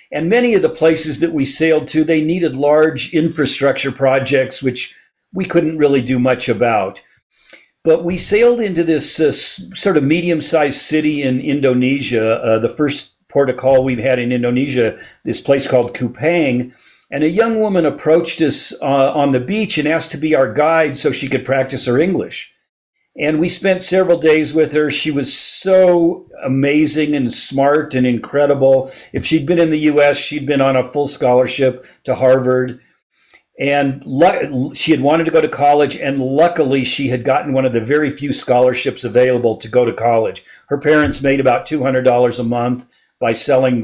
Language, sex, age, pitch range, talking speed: English, male, 50-69, 130-155 Hz, 180 wpm